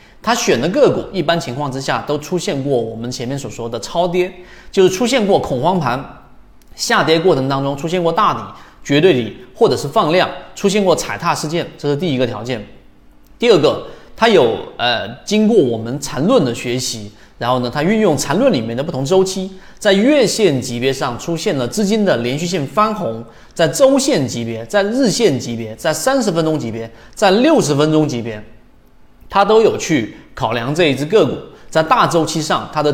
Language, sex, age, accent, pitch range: Chinese, male, 30-49, native, 125-195 Hz